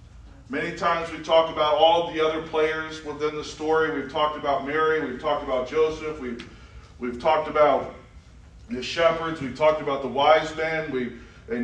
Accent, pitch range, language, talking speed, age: American, 155-210 Hz, English, 180 wpm, 40-59